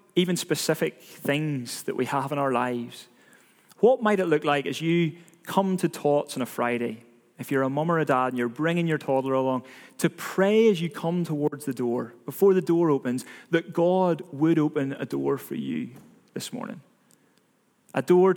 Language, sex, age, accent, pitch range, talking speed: English, male, 30-49, British, 140-190 Hz, 195 wpm